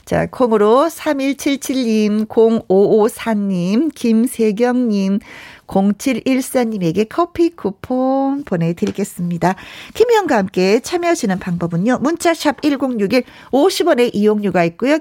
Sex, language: female, Korean